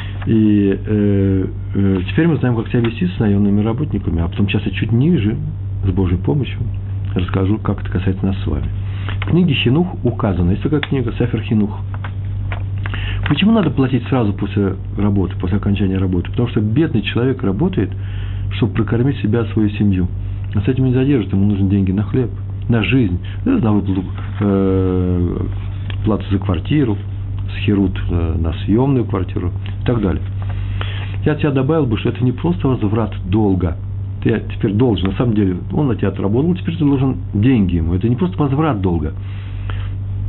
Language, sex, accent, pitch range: Russian, male, native, 95-125 Hz